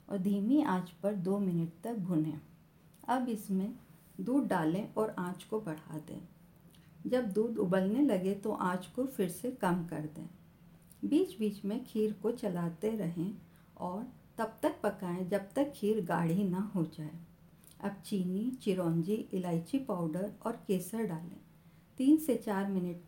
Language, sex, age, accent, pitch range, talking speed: Hindi, female, 50-69, native, 170-220 Hz, 155 wpm